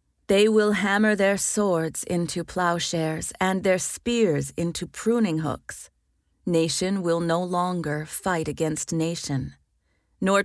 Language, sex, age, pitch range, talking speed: English, female, 30-49, 145-205 Hz, 120 wpm